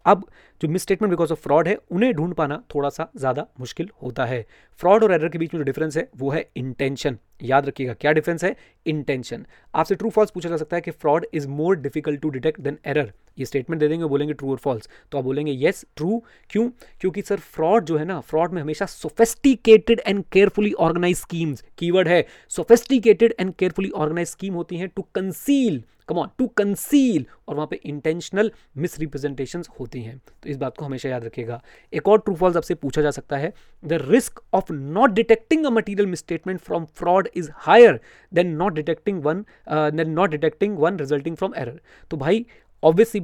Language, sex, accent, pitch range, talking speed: English, male, Indian, 145-200 Hz, 160 wpm